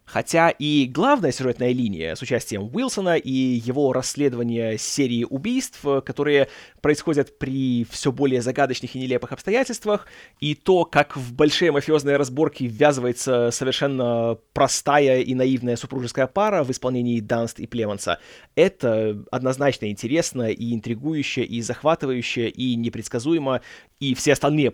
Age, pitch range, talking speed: 20-39, 125-155 Hz, 130 wpm